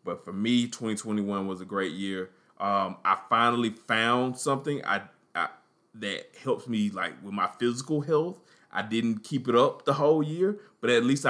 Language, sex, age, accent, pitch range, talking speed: English, male, 20-39, American, 110-140 Hz, 180 wpm